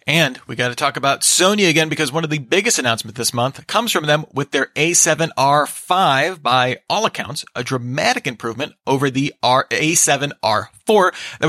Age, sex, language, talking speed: 30-49, male, English, 170 wpm